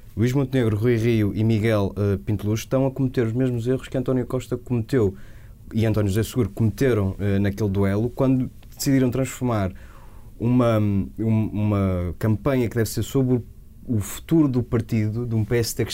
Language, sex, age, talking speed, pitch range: Portuguese, male, 20-39, 170 wpm, 105-125 Hz